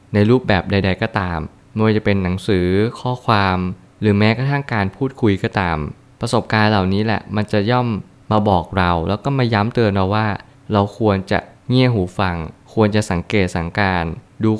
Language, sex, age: Thai, male, 20-39